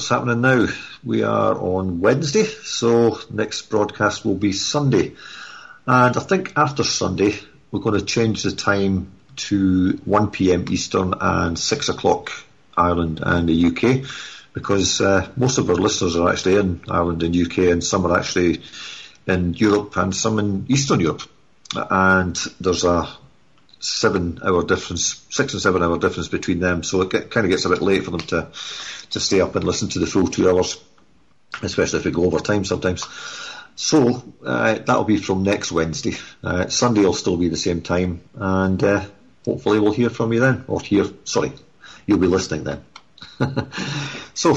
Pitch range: 90-120 Hz